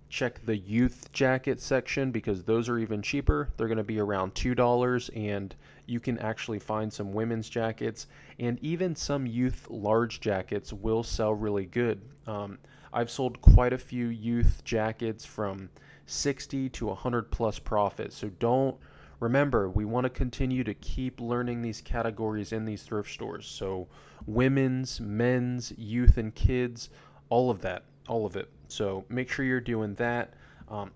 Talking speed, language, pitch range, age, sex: 160 wpm, English, 105-125 Hz, 20-39, male